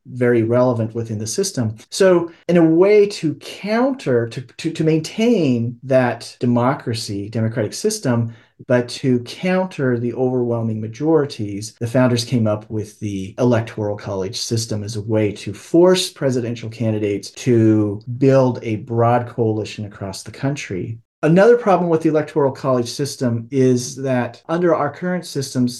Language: English